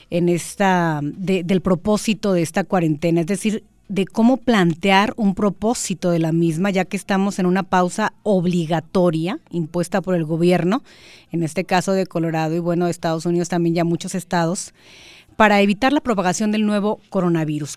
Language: English